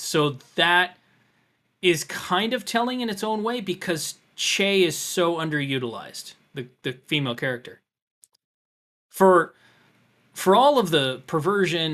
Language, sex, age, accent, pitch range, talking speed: English, male, 20-39, American, 135-180 Hz, 125 wpm